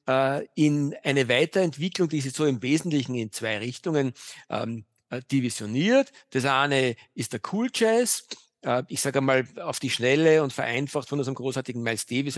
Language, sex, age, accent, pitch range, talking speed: German, male, 50-69, German, 130-170 Hz, 160 wpm